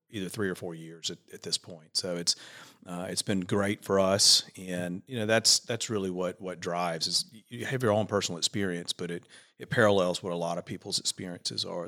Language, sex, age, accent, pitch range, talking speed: English, male, 40-59, American, 85-100 Hz, 220 wpm